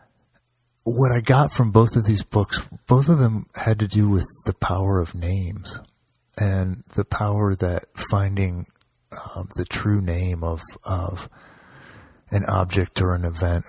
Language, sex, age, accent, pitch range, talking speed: English, male, 30-49, American, 90-110 Hz, 155 wpm